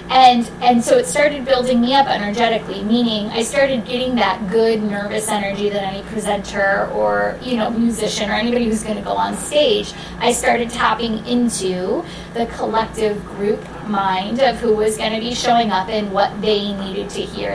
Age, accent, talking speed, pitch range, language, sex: 10-29, American, 180 wpm, 200-240 Hz, English, female